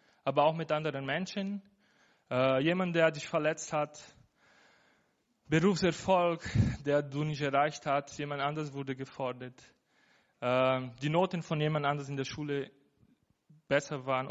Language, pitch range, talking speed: German, 135-170 Hz, 135 wpm